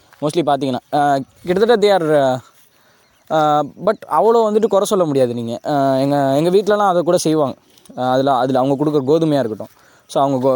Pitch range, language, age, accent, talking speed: 135-175 Hz, Tamil, 20-39, native, 140 wpm